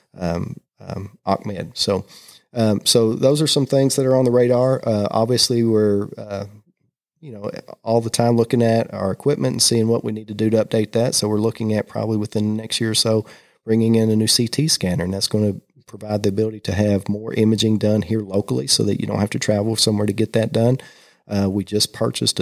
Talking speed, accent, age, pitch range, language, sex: 230 wpm, American, 30-49, 100-115 Hz, English, male